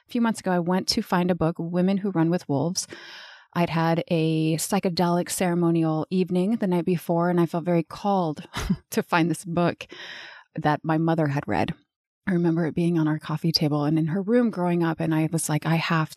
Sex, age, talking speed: female, 30-49, 210 wpm